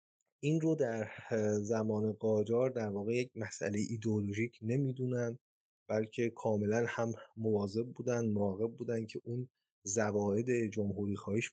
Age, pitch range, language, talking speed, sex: 30-49, 105-125 Hz, Persian, 120 wpm, male